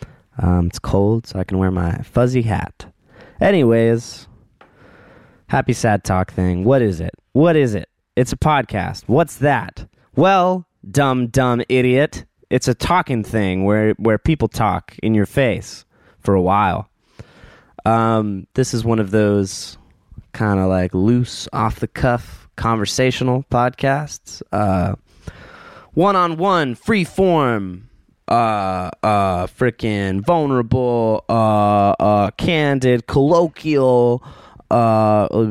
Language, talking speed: English, 115 wpm